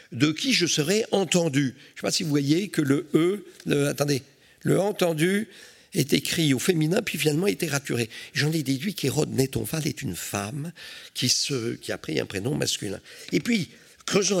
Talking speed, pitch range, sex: 190 wpm, 115-160 Hz, male